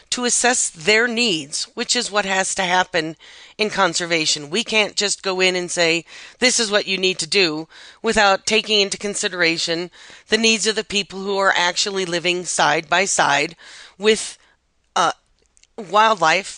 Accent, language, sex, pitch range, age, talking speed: American, English, female, 180-225 Hz, 40-59, 165 wpm